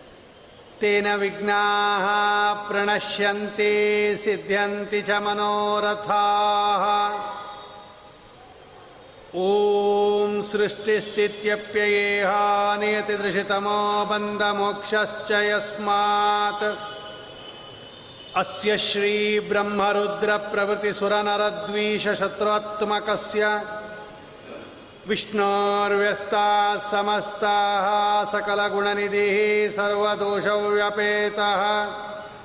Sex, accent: male, native